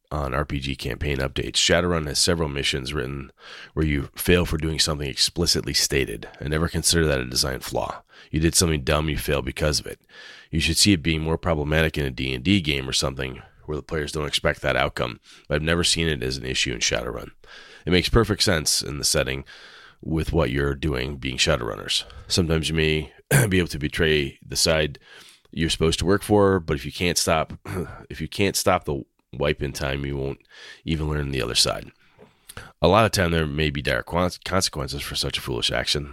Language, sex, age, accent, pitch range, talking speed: English, male, 30-49, American, 70-85 Hz, 205 wpm